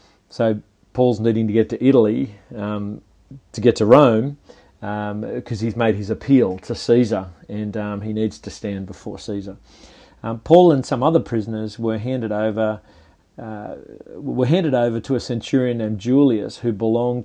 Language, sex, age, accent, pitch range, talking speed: English, male, 40-59, Australian, 110-125 Hz, 165 wpm